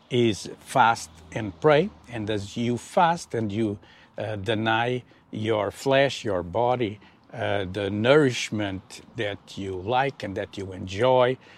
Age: 60-79